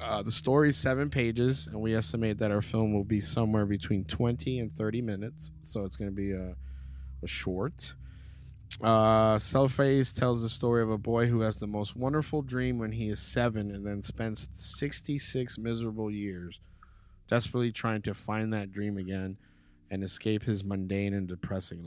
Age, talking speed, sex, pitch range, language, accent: 20-39, 180 wpm, male, 95-110 Hz, English, American